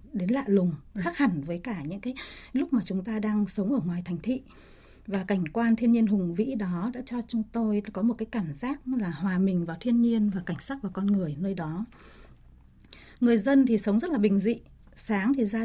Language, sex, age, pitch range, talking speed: Vietnamese, female, 20-39, 190-245 Hz, 235 wpm